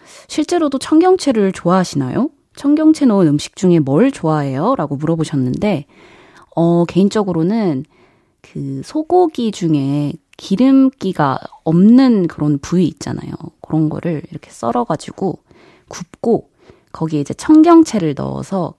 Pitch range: 155-230 Hz